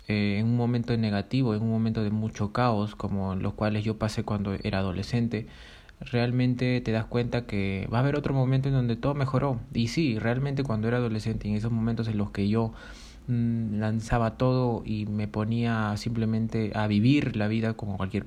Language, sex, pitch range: Spanish, male, 105-125 Hz